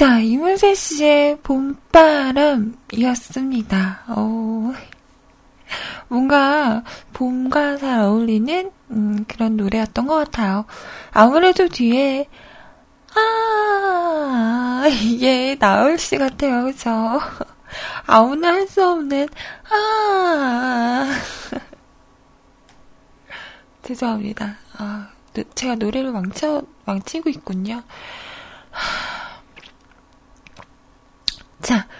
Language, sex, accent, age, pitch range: Korean, female, native, 20-39, 225-300 Hz